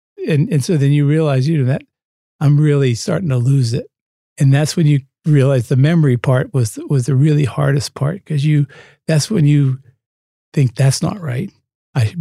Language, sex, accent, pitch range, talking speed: English, male, American, 130-165 Hz, 195 wpm